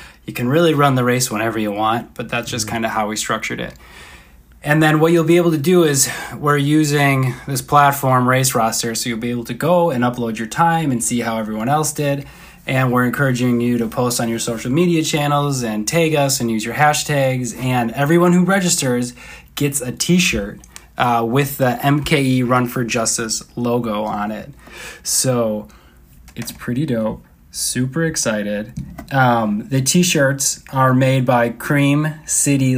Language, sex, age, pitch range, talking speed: English, male, 20-39, 115-140 Hz, 180 wpm